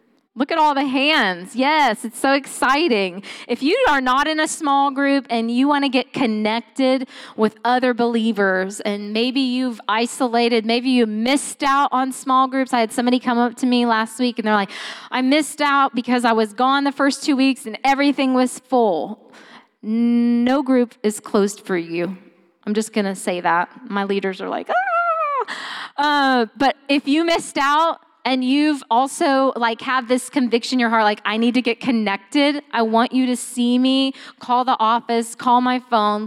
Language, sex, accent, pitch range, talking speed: English, female, American, 225-275 Hz, 190 wpm